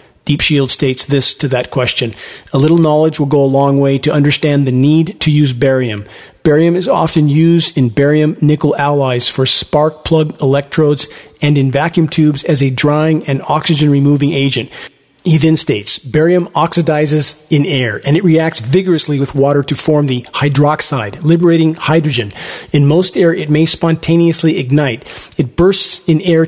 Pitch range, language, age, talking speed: 140-165 Hz, English, 40-59, 170 wpm